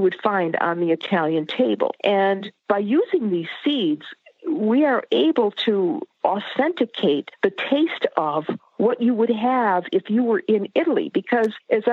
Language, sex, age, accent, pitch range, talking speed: English, female, 50-69, American, 170-245 Hz, 150 wpm